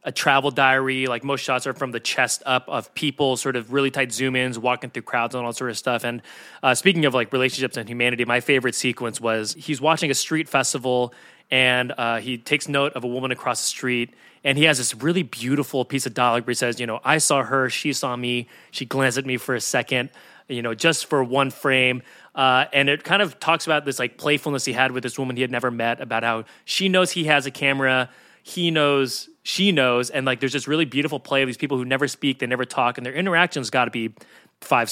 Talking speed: 245 wpm